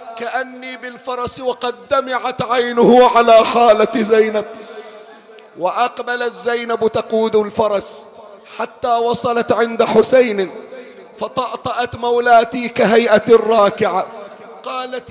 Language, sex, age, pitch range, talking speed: Arabic, male, 40-59, 220-255 Hz, 85 wpm